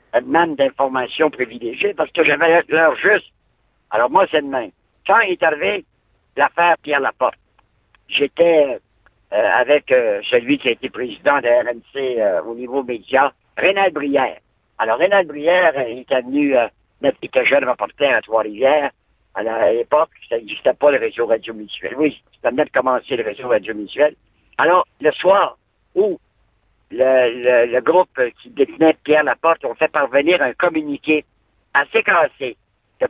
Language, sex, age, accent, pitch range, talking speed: French, male, 60-79, French, 135-195 Hz, 160 wpm